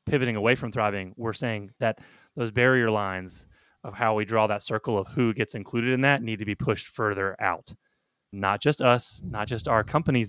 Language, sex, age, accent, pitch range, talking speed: English, male, 30-49, American, 105-125 Hz, 205 wpm